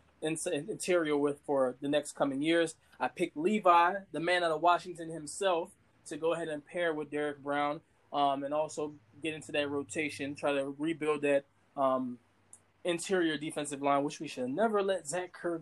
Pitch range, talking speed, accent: 140-170 Hz, 175 wpm, American